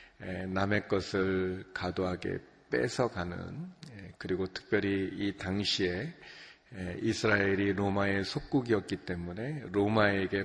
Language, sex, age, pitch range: Korean, male, 40-59, 95-115 Hz